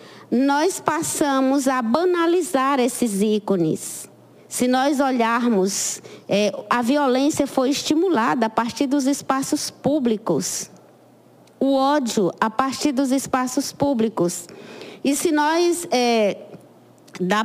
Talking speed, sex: 105 wpm, female